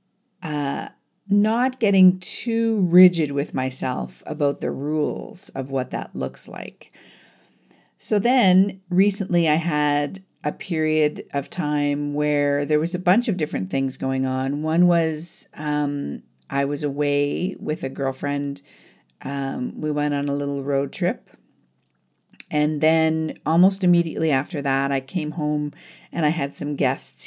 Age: 50-69